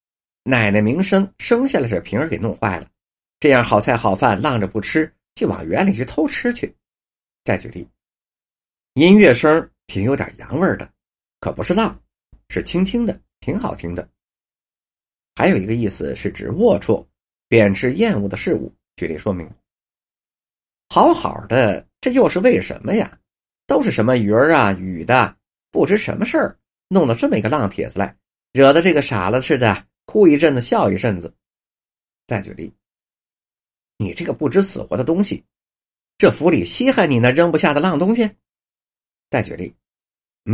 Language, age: Chinese, 50-69